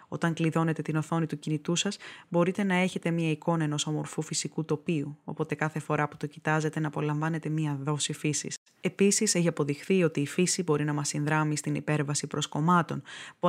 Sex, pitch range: female, 150-170 Hz